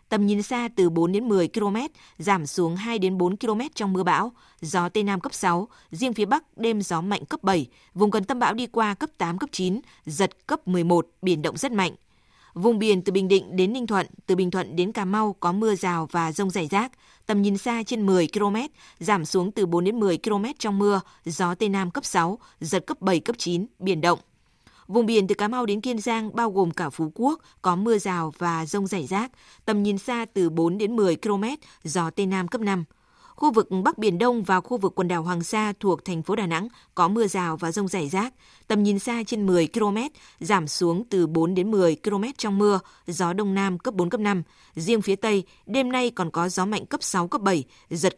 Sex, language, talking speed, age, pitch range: female, Vietnamese, 235 wpm, 20-39, 180-220 Hz